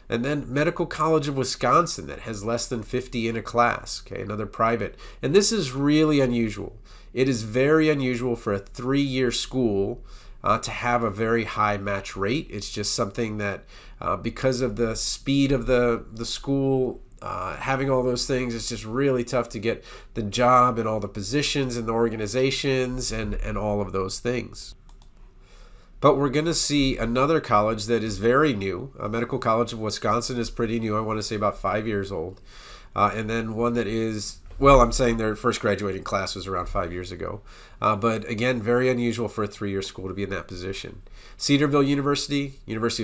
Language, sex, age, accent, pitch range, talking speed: English, male, 40-59, American, 105-130 Hz, 190 wpm